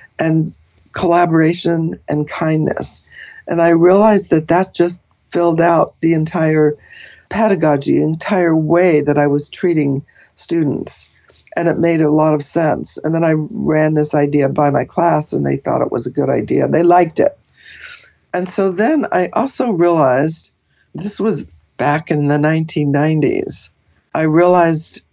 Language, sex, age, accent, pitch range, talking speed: English, female, 60-79, American, 145-170 Hz, 155 wpm